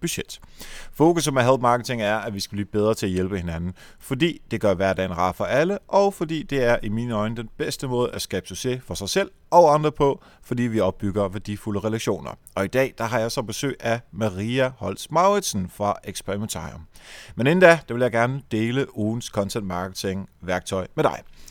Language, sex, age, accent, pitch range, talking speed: Danish, male, 30-49, native, 100-135 Hz, 205 wpm